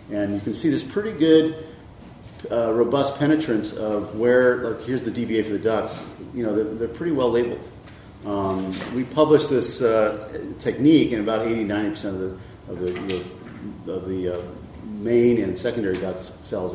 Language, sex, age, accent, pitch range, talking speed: English, male, 50-69, American, 100-120 Hz, 170 wpm